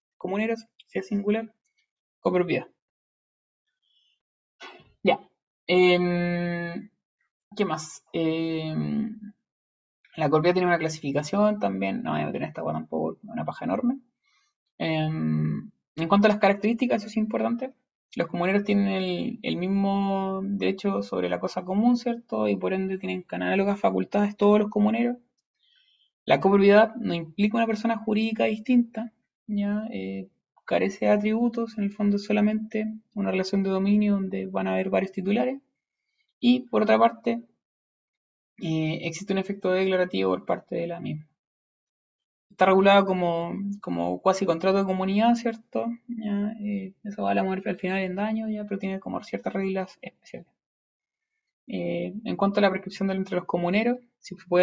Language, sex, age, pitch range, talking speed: Spanish, male, 20-39, 170-220 Hz, 150 wpm